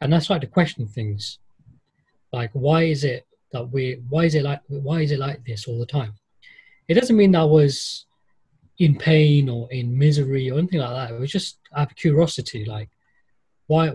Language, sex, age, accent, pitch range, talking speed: English, male, 20-39, British, 120-150 Hz, 200 wpm